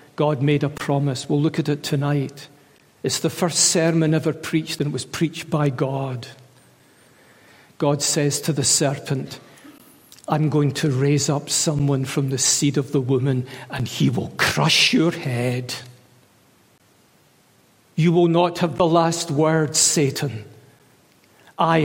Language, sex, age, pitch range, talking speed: English, male, 60-79, 140-175 Hz, 145 wpm